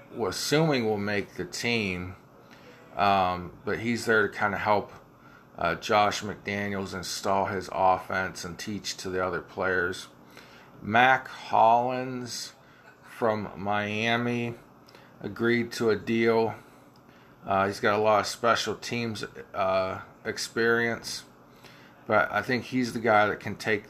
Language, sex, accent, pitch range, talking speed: English, male, American, 95-115 Hz, 135 wpm